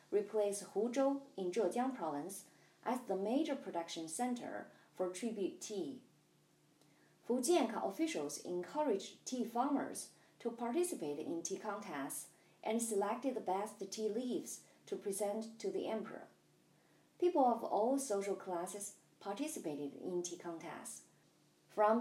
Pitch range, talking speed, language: 195-270 Hz, 120 wpm, English